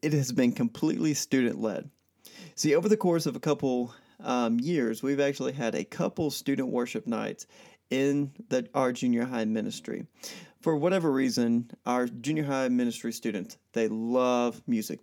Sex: male